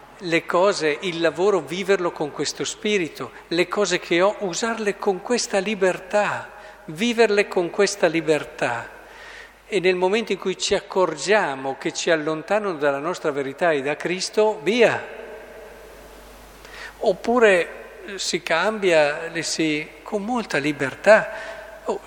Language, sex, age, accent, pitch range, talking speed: Italian, male, 50-69, native, 140-205 Hz, 125 wpm